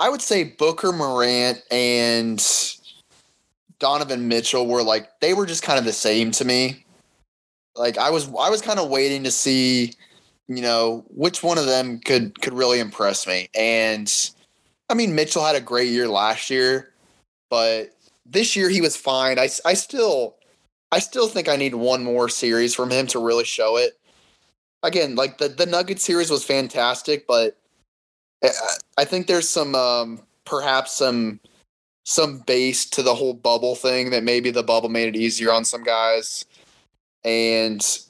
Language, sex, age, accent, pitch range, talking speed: English, male, 20-39, American, 115-140 Hz, 170 wpm